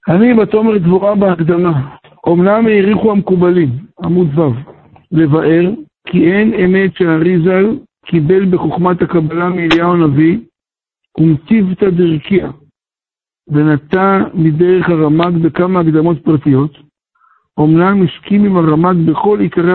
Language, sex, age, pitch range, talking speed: Hebrew, male, 60-79, 155-185 Hz, 110 wpm